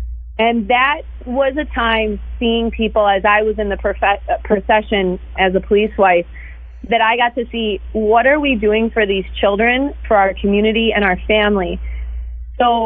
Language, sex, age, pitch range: English, female, 30-49, 195-225 Hz